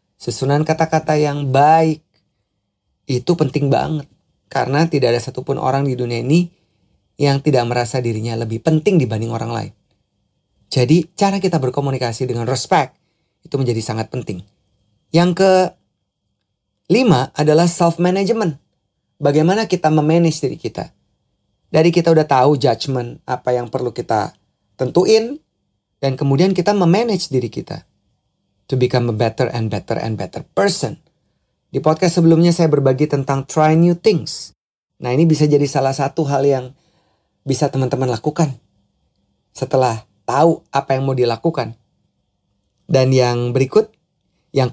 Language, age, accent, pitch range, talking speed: Indonesian, 30-49, native, 120-160 Hz, 130 wpm